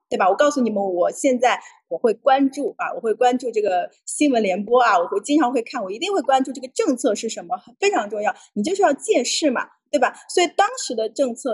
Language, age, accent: Chinese, 20-39, native